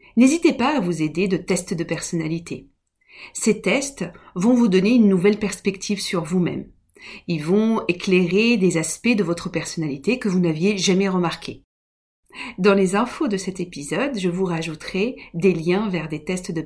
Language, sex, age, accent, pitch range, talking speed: French, female, 40-59, French, 160-205 Hz, 170 wpm